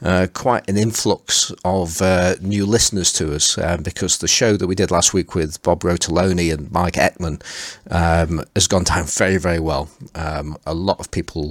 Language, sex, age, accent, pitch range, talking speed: English, male, 40-59, British, 85-100 Hz, 195 wpm